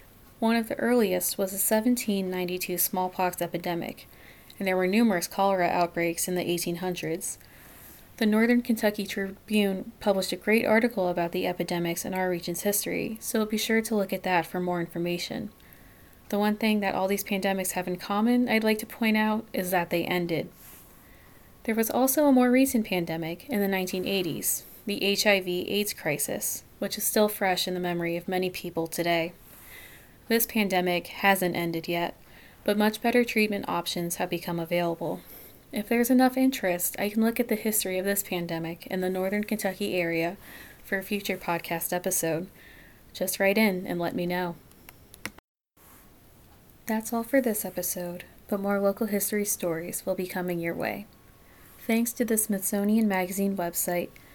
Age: 20-39